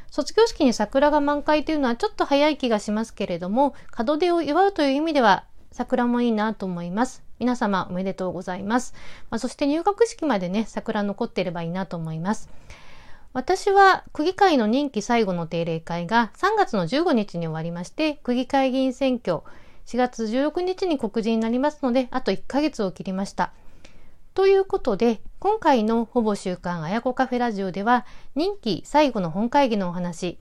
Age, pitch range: 40-59, 210-290 Hz